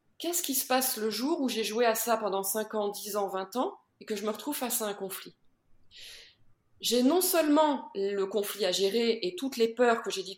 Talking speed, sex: 235 wpm, female